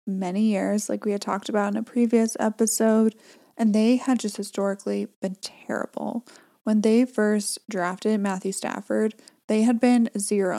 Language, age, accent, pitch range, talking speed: English, 20-39, American, 205-245 Hz, 160 wpm